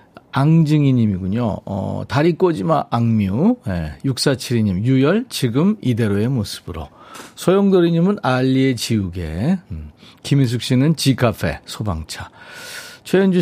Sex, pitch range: male, 105-165 Hz